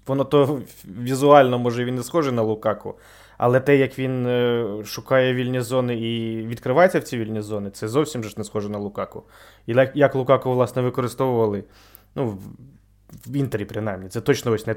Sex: male